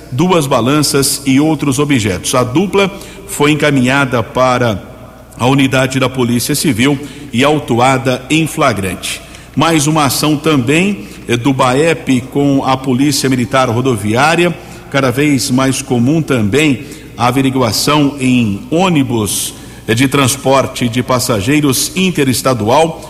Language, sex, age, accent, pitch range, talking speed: Portuguese, male, 50-69, Brazilian, 125-145 Hz, 115 wpm